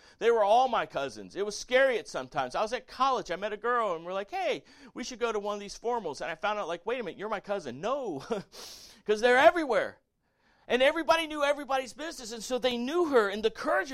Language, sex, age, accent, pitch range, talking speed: English, male, 40-59, American, 200-280 Hz, 255 wpm